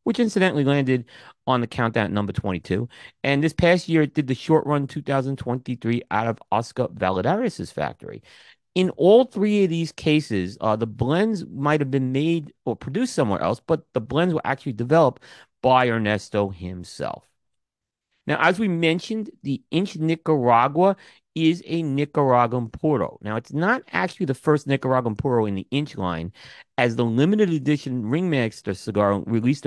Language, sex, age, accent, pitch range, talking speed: English, male, 40-59, American, 105-155 Hz, 160 wpm